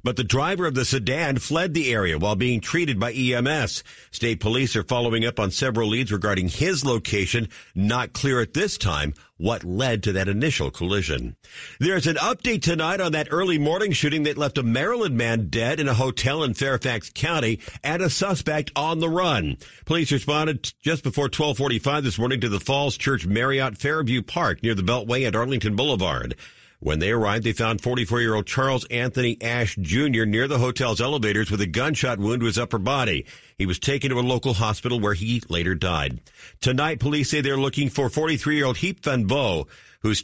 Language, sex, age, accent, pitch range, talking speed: English, male, 50-69, American, 110-140 Hz, 190 wpm